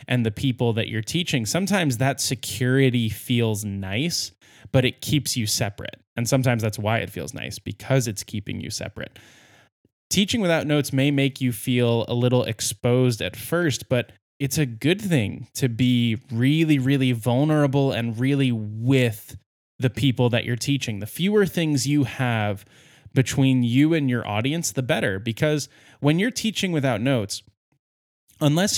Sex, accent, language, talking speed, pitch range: male, American, English, 160 wpm, 115-145 Hz